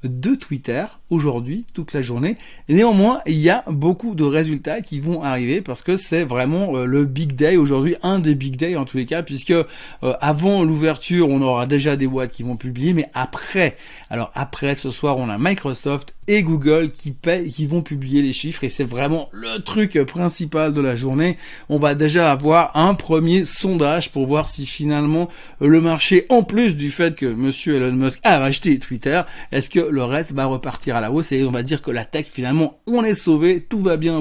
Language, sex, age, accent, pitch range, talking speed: French, male, 30-49, French, 135-170 Hz, 205 wpm